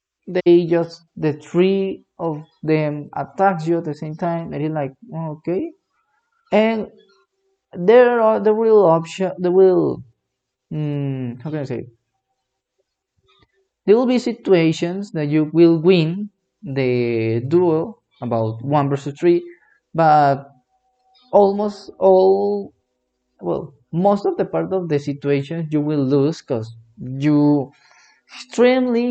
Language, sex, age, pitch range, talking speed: English, male, 30-49, 140-185 Hz, 125 wpm